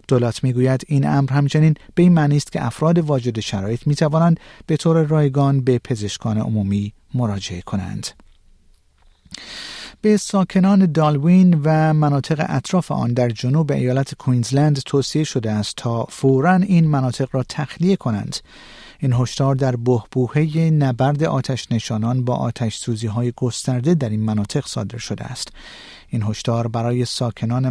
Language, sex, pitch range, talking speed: Persian, male, 120-150 Hz, 145 wpm